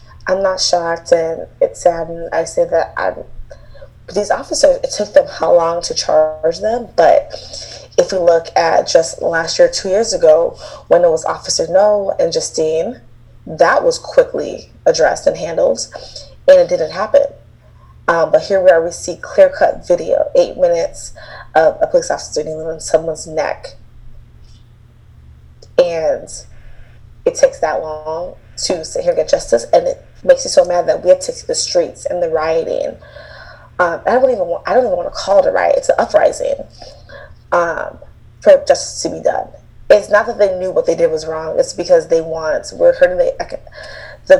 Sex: female